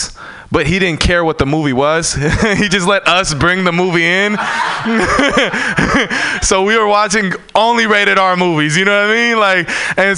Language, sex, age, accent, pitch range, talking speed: English, male, 20-39, American, 155-205 Hz, 185 wpm